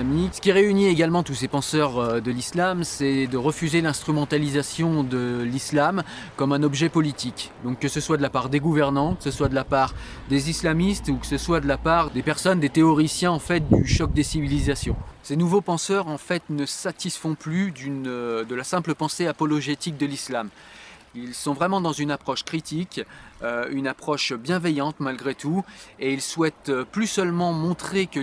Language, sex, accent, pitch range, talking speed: French, male, French, 140-175 Hz, 180 wpm